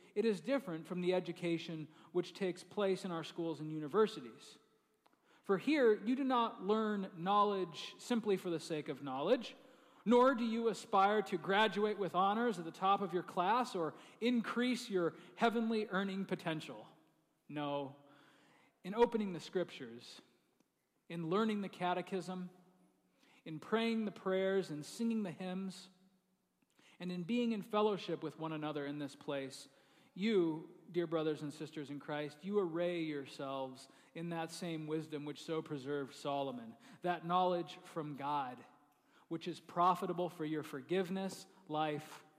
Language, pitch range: English, 160-205 Hz